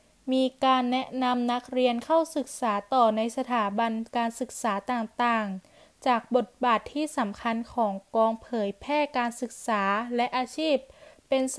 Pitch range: 230-275 Hz